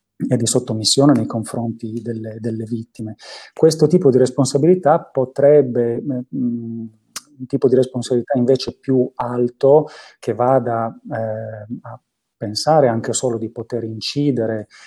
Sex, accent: male, native